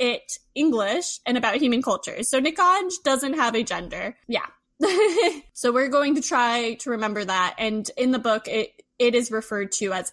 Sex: female